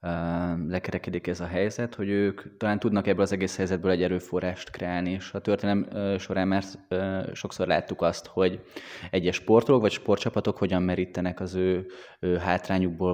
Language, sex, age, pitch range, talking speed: Hungarian, male, 20-39, 90-100 Hz, 155 wpm